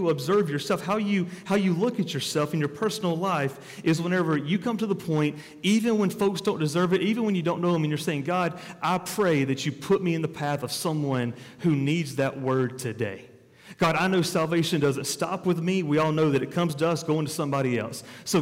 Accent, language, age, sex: American, English, 40-59, male